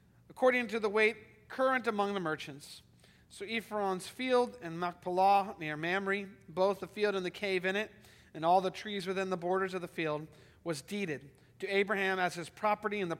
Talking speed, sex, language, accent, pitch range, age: 190 wpm, male, English, American, 150-200 Hz, 40-59